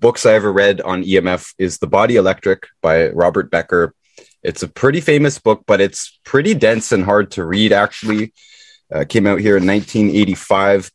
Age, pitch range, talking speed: 20-39, 90-115 Hz, 180 wpm